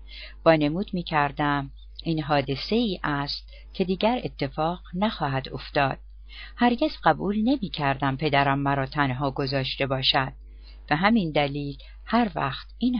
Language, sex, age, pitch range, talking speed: Persian, female, 50-69, 140-180 Hz, 115 wpm